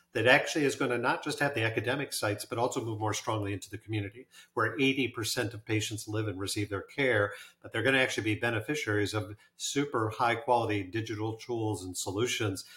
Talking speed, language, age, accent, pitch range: 195 wpm, English, 50-69, American, 110-125 Hz